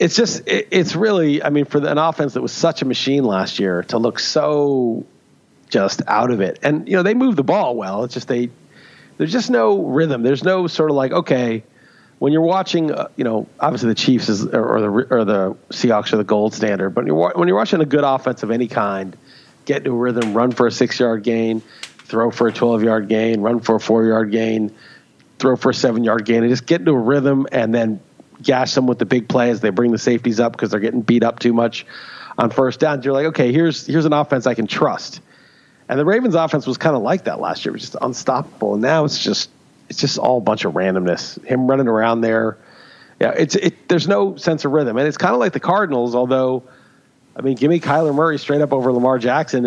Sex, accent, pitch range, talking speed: male, American, 115-150 Hz, 245 wpm